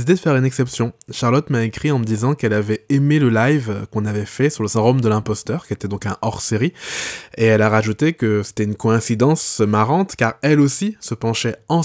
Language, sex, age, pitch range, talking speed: English, male, 20-39, 115-140 Hz, 225 wpm